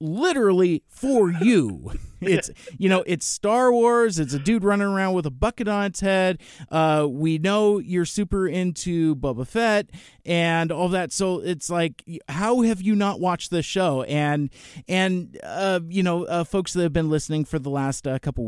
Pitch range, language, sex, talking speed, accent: 140-185 Hz, English, male, 185 wpm, American